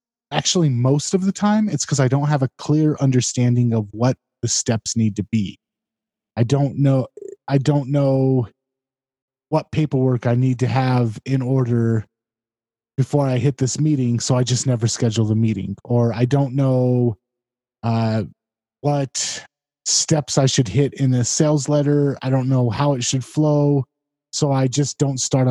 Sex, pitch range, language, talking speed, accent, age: male, 115-140 Hz, English, 170 wpm, American, 20-39